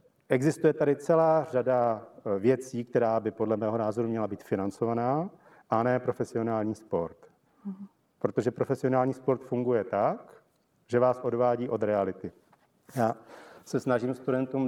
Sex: male